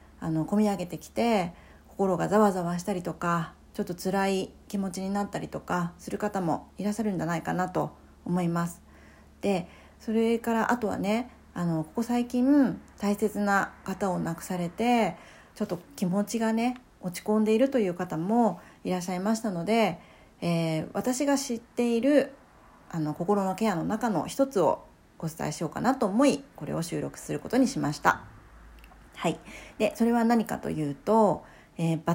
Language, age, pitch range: Japanese, 40-59, 175-250 Hz